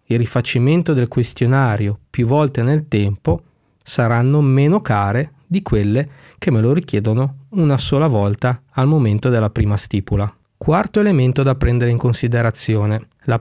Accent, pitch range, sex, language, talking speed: native, 110-140 Hz, male, Italian, 145 wpm